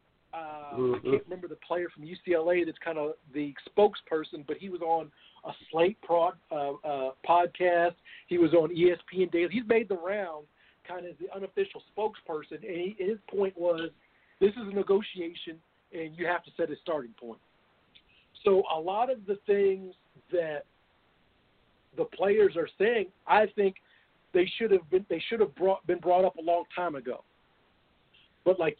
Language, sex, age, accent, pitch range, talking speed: English, male, 50-69, American, 165-200 Hz, 175 wpm